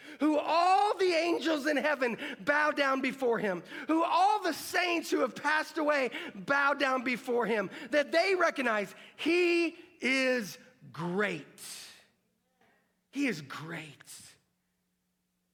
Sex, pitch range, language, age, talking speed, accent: male, 175-275 Hz, English, 40-59, 120 wpm, American